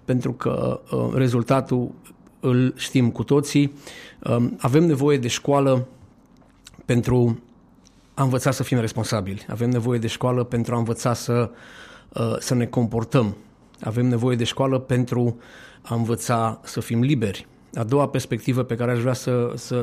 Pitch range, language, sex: 120-135 Hz, Romanian, male